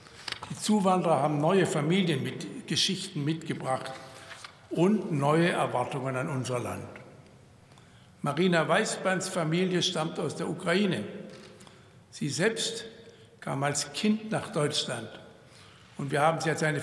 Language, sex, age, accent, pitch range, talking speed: German, male, 60-79, German, 140-175 Hz, 115 wpm